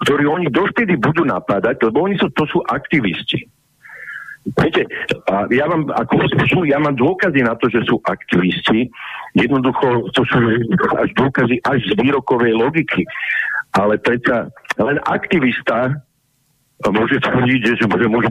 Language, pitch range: Slovak, 120-160 Hz